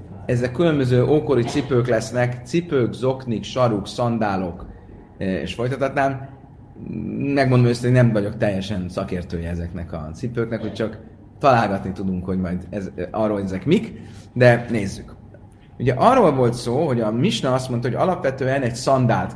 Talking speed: 145 wpm